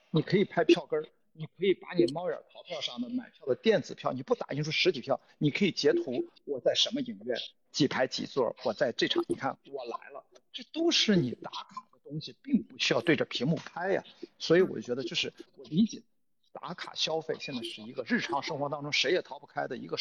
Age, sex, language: 50-69, male, Chinese